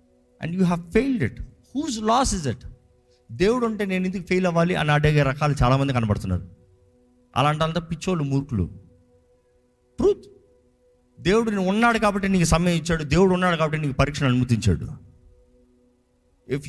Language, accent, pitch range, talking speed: Telugu, native, 125-190 Hz, 145 wpm